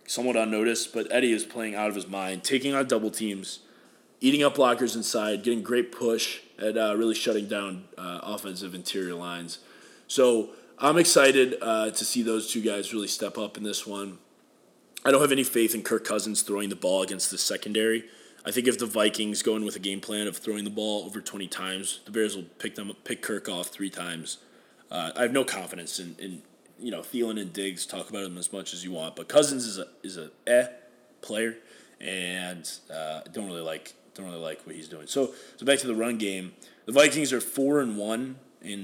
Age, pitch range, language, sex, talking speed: 20-39, 100-120 Hz, English, male, 220 wpm